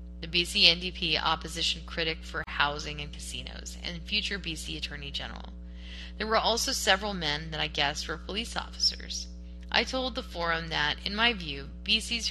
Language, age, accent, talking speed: English, 10-29, American, 165 wpm